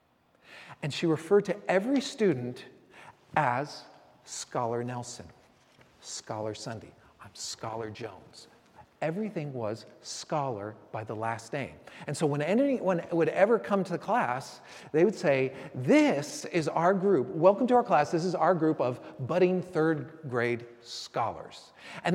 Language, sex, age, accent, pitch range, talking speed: English, male, 40-59, American, 130-190 Hz, 140 wpm